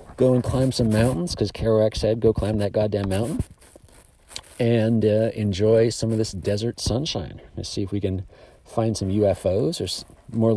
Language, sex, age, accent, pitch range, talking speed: English, male, 40-59, American, 95-115 Hz, 180 wpm